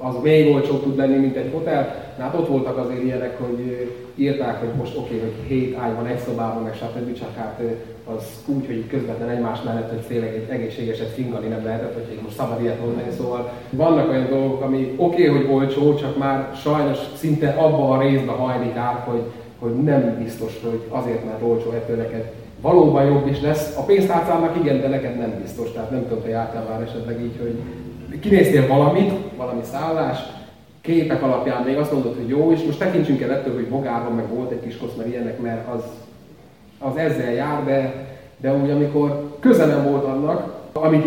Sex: male